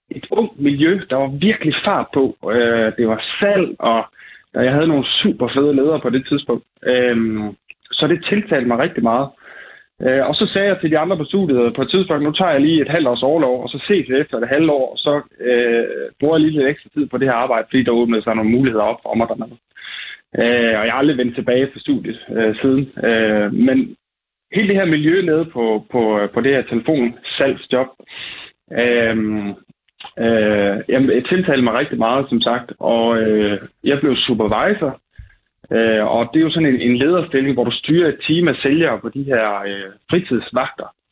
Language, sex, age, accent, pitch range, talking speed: Danish, male, 20-39, native, 115-160 Hz, 185 wpm